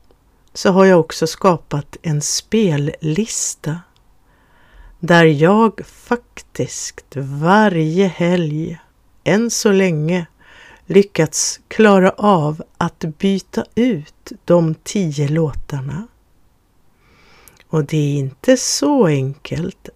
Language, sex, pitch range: Swedish, female, 155-195 Hz